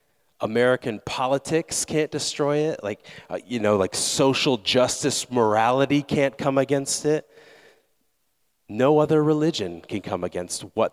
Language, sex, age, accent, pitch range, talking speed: English, male, 30-49, American, 100-150 Hz, 130 wpm